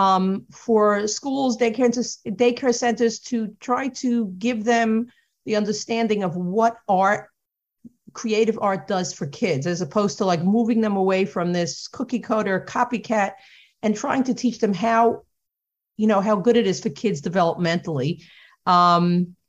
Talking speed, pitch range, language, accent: 155 wpm, 175-235 Hz, English, American